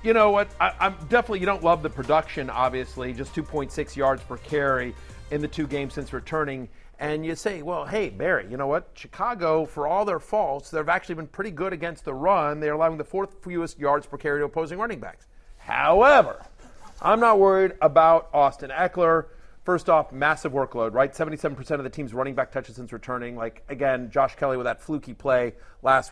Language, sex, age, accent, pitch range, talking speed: English, male, 40-59, American, 130-165 Hz, 200 wpm